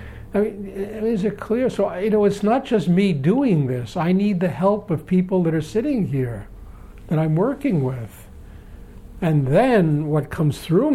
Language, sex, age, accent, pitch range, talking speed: English, male, 60-79, American, 140-195 Hz, 180 wpm